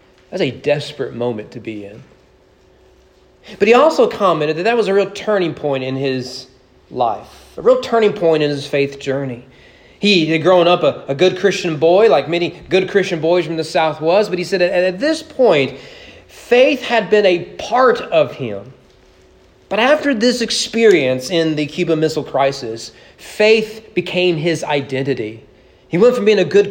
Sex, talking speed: male, 180 wpm